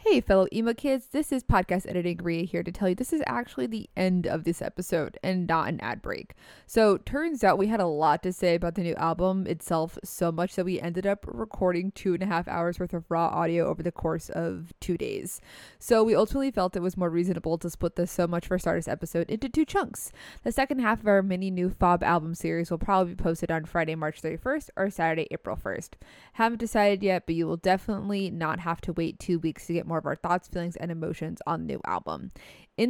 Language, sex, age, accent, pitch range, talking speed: English, female, 20-39, American, 170-215 Hz, 240 wpm